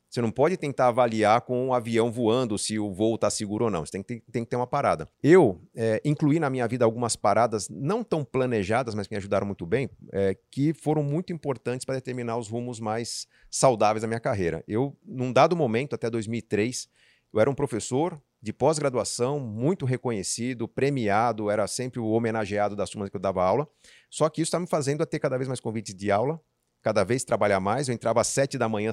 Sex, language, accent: male, Portuguese, Brazilian